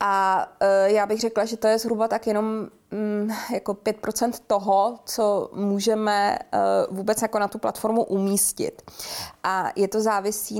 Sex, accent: female, native